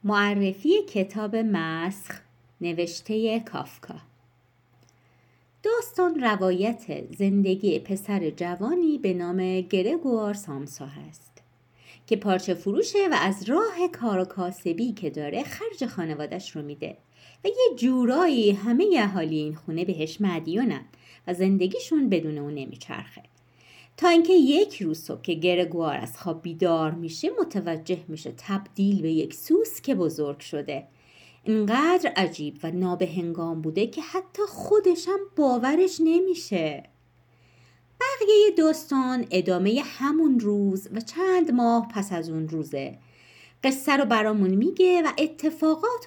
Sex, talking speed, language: female, 120 wpm, Persian